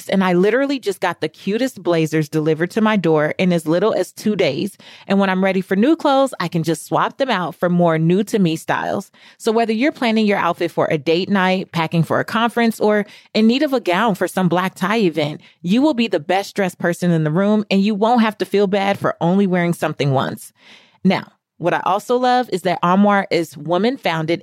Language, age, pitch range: English, 30-49, 170-215 Hz